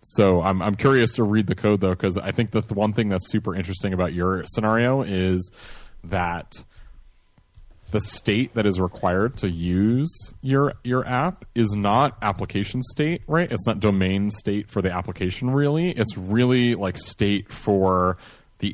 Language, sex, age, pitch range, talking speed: English, male, 30-49, 95-115 Hz, 170 wpm